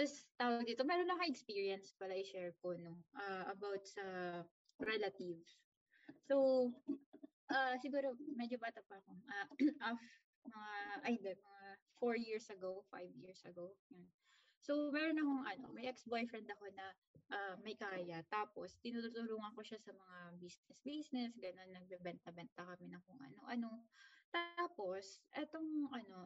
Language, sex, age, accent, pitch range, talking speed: Filipino, female, 20-39, native, 195-265 Hz, 140 wpm